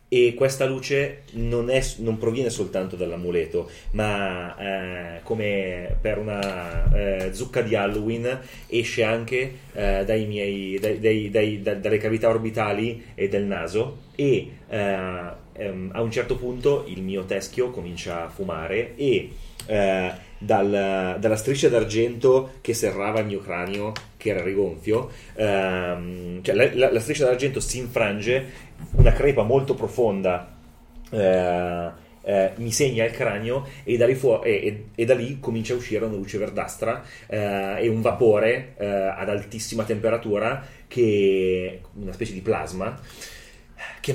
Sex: male